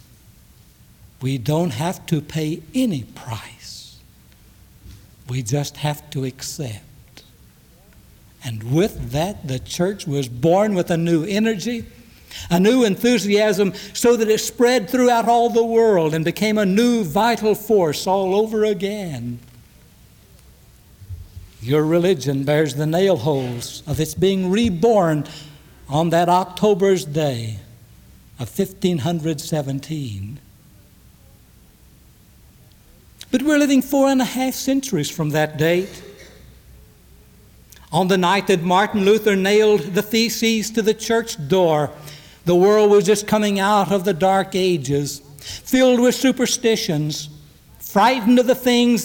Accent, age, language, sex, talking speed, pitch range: American, 60-79, English, male, 120 wpm, 150-225 Hz